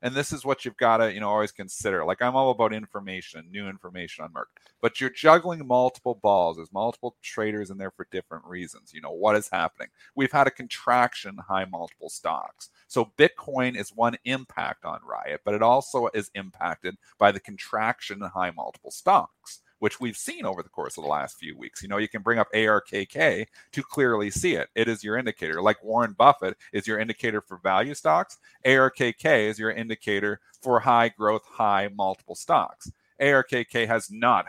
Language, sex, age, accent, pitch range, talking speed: English, male, 40-59, American, 100-120 Hz, 195 wpm